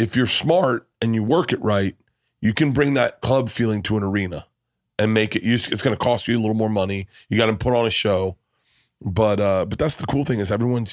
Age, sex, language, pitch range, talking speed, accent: 30-49, male, English, 100-120 Hz, 255 wpm, American